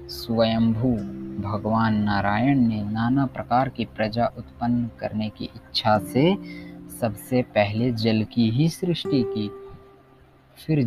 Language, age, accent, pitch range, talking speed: Hindi, 20-39, native, 105-130 Hz, 115 wpm